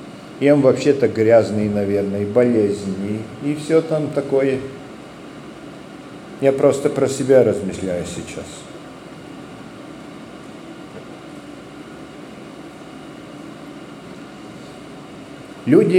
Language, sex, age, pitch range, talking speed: Russian, male, 50-69, 120-155 Hz, 65 wpm